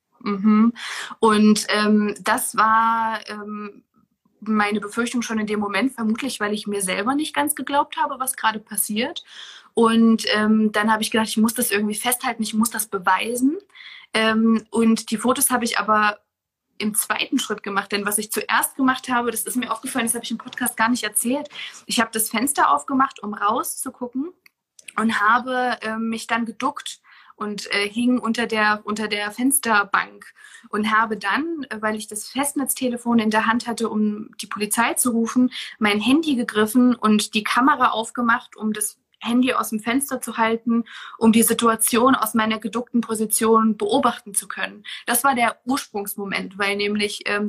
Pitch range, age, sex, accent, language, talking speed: 210-245 Hz, 20-39, female, German, German, 175 wpm